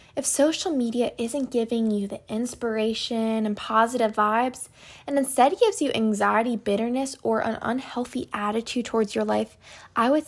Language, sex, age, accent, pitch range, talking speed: English, female, 10-29, American, 215-255 Hz, 150 wpm